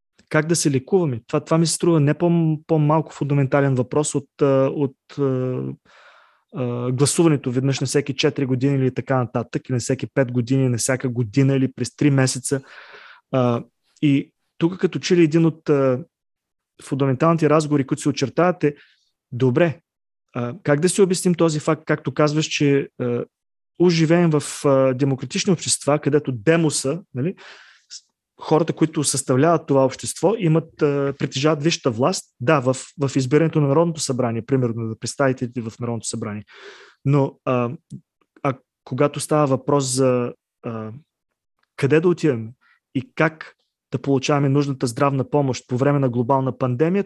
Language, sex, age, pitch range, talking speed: Bulgarian, male, 20-39, 130-160 Hz, 140 wpm